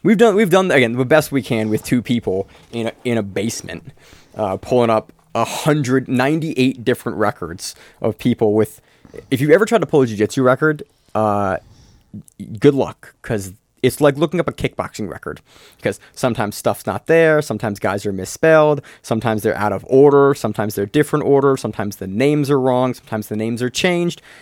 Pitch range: 105-135 Hz